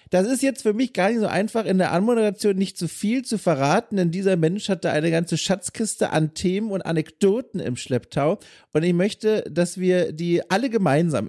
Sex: male